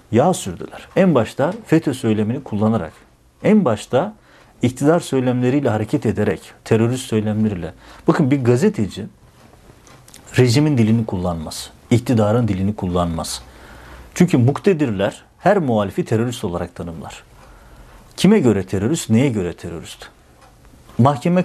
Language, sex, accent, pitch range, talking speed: Turkish, male, native, 105-135 Hz, 105 wpm